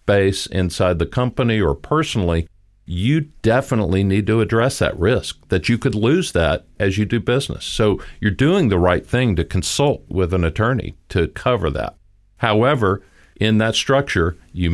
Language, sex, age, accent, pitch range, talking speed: English, male, 50-69, American, 85-110 Hz, 165 wpm